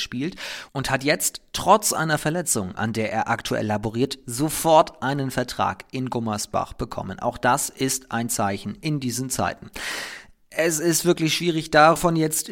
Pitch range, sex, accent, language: 110-150 Hz, male, German, German